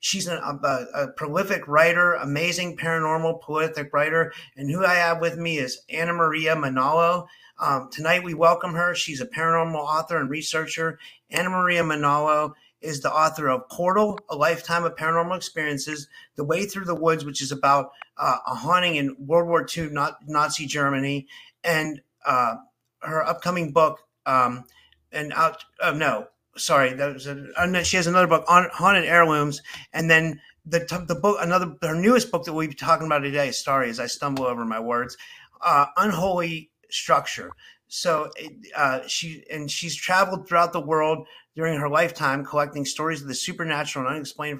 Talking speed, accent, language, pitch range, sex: 165 wpm, American, English, 145-170 Hz, male